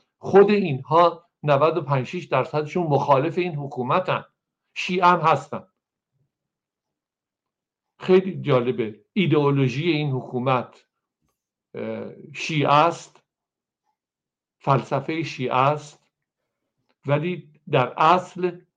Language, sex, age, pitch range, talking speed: Persian, male, 60-79, 120-155 Hz, 70 wpm